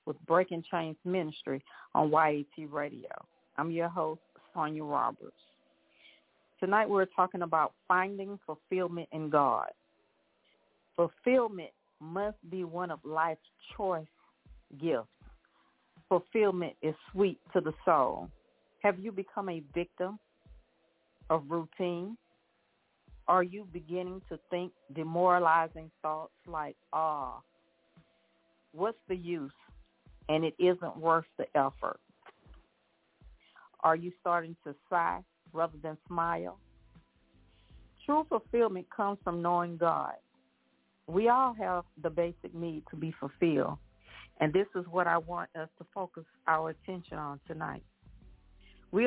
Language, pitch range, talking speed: English, 160-185 Hz, 115 wpm